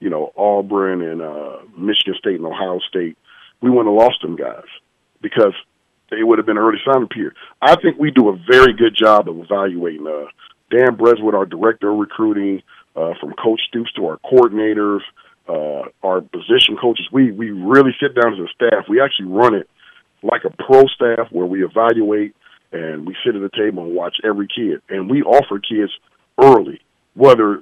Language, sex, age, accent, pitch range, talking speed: English, male, 40-59, American, 105-145 Hz, 190 wpm